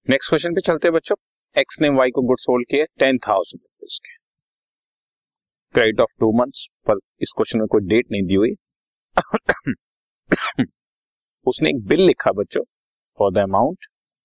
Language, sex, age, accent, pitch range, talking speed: Hindi, male, 30-49, native, 95-130 Hz, 145 wpm